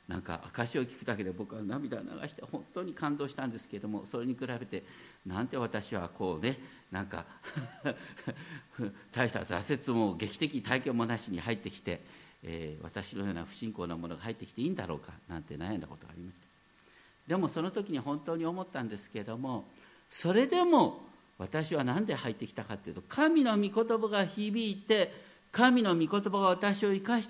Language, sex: Japanese, male